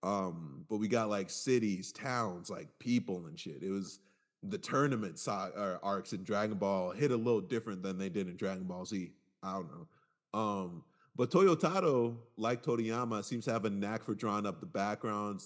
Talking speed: 195 wpm